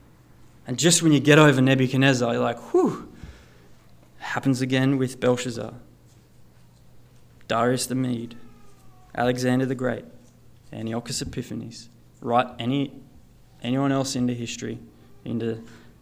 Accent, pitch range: Australian, 115-135 Hz